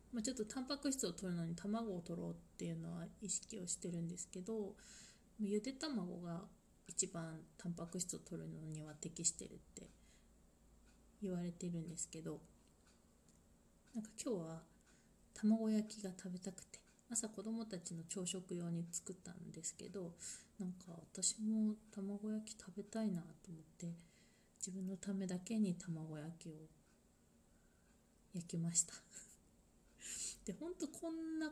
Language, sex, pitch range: Japanese, female, 170-210 Hz